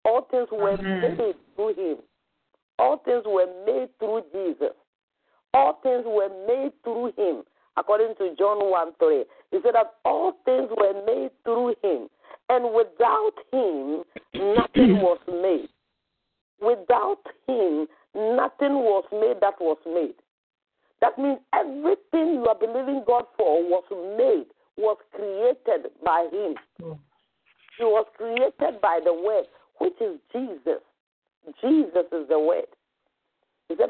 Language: English